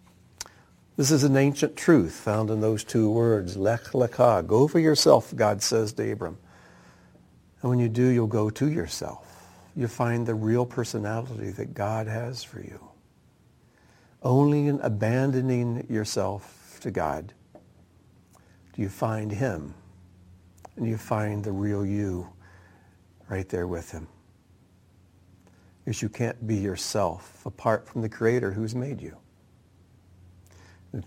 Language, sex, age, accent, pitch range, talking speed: English, male, 60-79, American, 90-120 Hz, 135 wpm